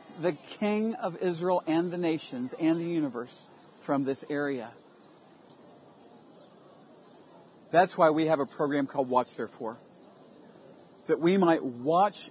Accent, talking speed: American, 125 wpm